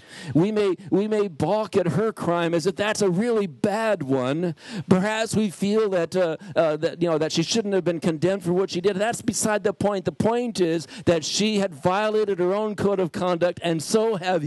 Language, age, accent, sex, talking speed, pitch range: English, 60-79, American, male, 220 wpm, 170-215 Hz